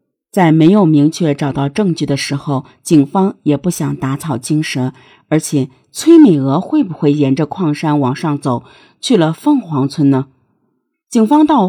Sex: female